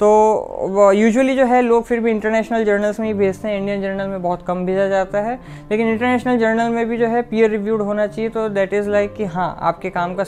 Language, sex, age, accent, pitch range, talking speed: Hindi, female, 20-39, native, 190-215 Hz, 240 wpm